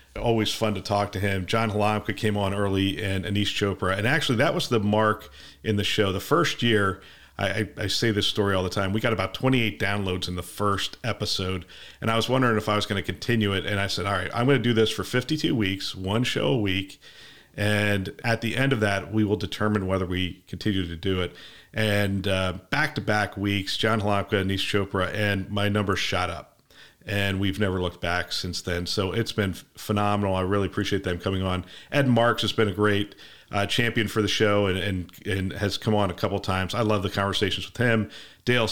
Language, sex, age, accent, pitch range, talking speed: English, male, 40-59, American, 95-110 Hz, 225 wpm